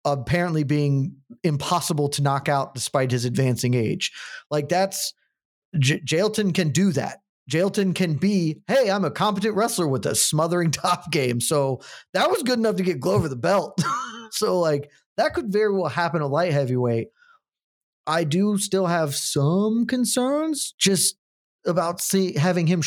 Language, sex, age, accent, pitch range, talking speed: English, male, 30-49, American, 140-185 Hz, 155 wpm